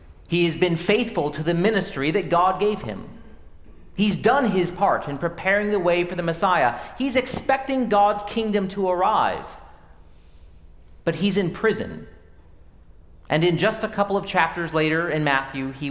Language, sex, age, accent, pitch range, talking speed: English, male, 40-59, American, 110-180 Hz, 160 wpm